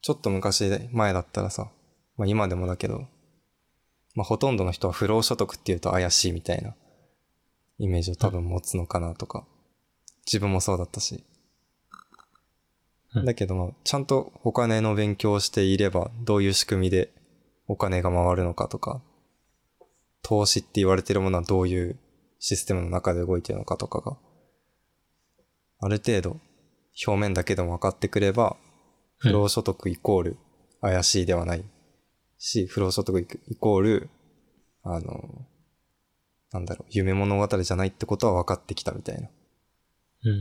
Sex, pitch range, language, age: male, 90-105 Hz, Japanese, 20-39